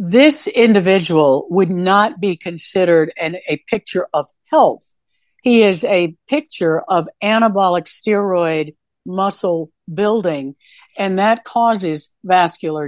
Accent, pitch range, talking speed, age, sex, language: American, 165-210 Hz, 110 wpm, 60-79, female, English